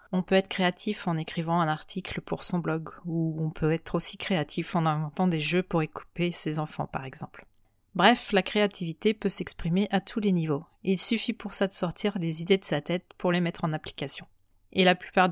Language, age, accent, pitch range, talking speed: French, 30-49, French, 170-200 Hz, 215 wpm